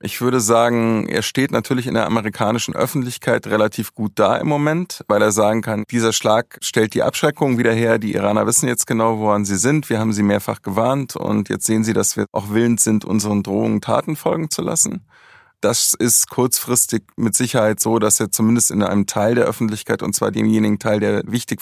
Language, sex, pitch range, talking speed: German, male, 105-115 Hz, 205 wpm